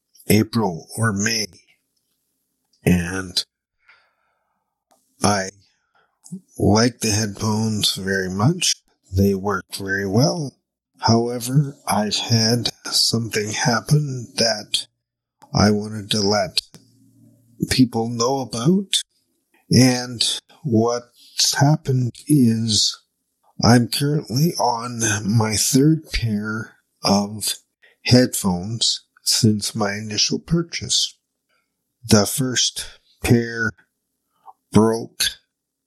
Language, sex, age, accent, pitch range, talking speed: English, male, 50-69, American, 105-125 Hz, 80 wpm